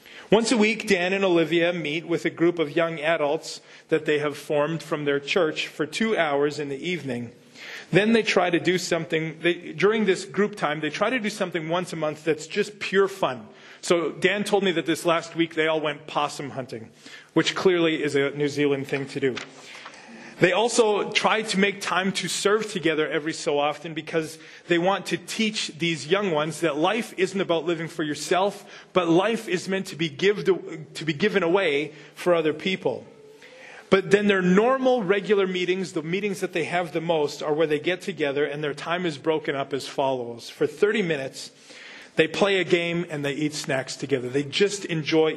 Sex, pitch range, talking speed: male, 155-190 Hz, 200 wpm